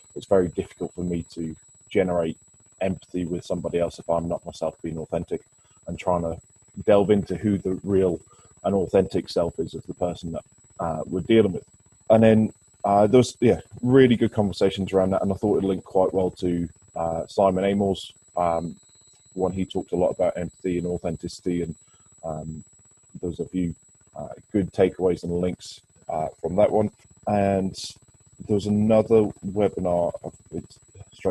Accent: British